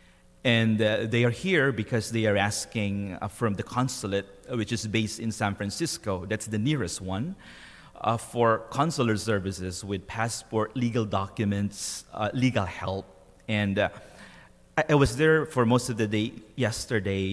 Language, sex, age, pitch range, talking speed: English, male, 30-49, 100-120 Hz, 160 wpm